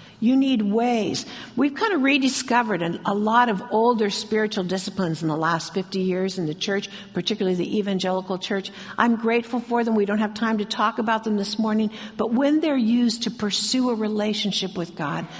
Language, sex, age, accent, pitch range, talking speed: English, female, 60-79, American, 190-235 Hz, 190 wpm